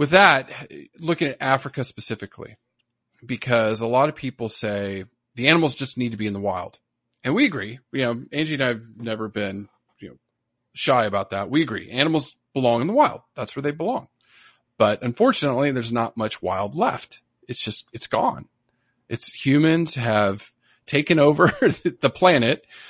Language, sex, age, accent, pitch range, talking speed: English, male, 40-59, American, 110-140 Hz, 175 wpm